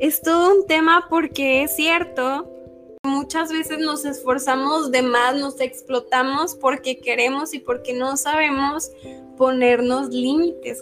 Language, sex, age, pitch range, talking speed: Spanish, female, 10-29, 240-285 Hz, 135 wpm